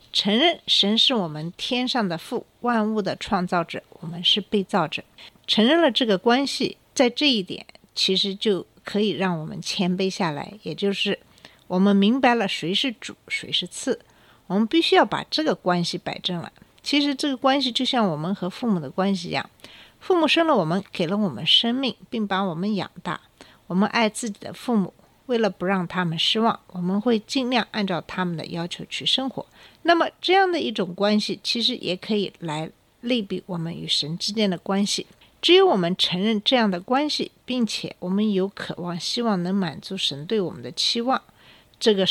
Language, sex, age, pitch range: Chinese, female, 60-79, 180-240 Hz